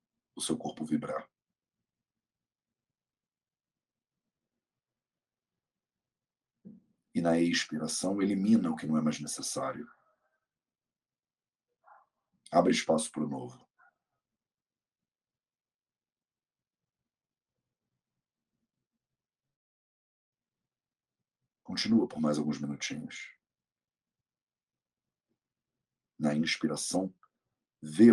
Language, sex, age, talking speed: English, male, 50-69, 60 wpm